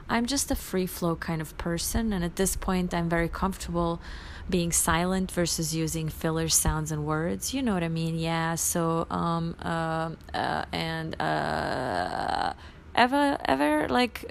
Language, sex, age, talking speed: English, female, 30-49, 160 wpm